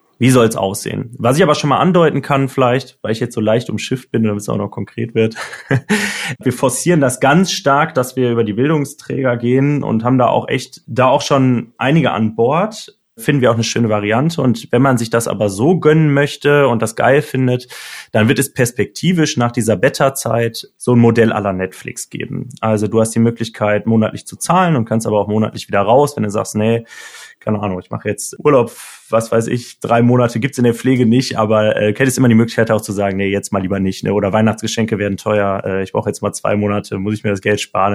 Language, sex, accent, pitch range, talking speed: German, male, German, 110-135 Hz, 230 wpm